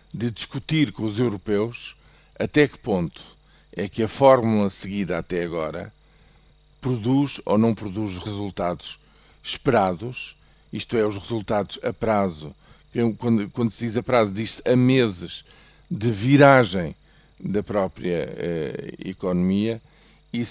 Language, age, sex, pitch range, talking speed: Portuguese, 50-69, male, 100-120 Hz, 125 wpm